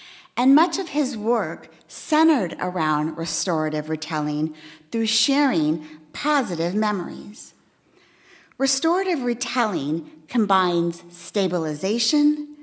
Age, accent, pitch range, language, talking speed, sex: 50-69, American, 175-265 Hz, English, 80 wpm, female